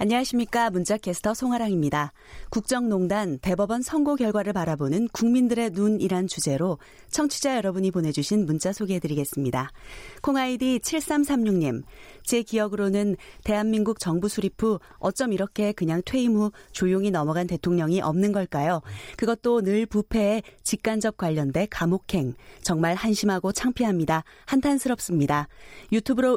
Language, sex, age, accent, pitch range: Korean, female, 30-49, native, 175-235 Hz